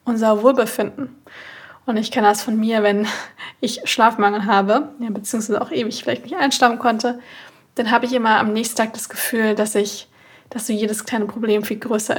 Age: 20-39